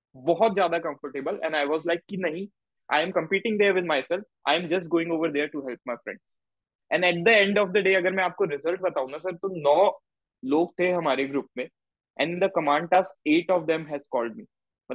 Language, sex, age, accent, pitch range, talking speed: Hindi, male, 20-39, native, 160-210 Hz, 190 wpm